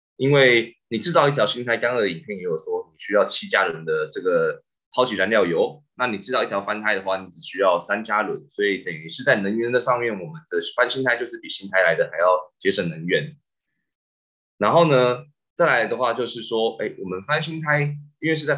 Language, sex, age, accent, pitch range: Chinese, male, 20-39, native, 100-160 Hz